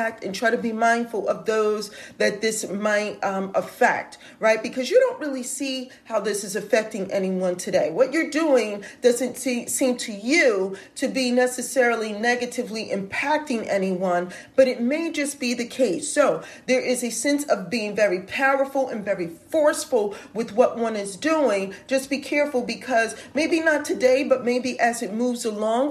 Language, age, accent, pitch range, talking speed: English, 40-59, American, 210-265 Hz, 175 wpm